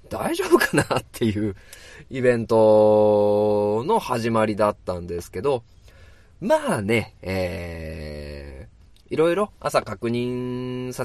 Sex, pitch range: male, 95-155 Hz